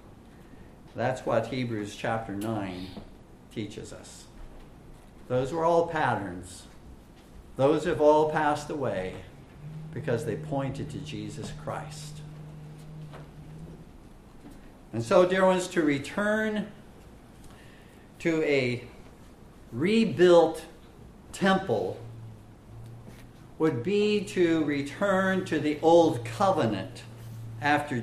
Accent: American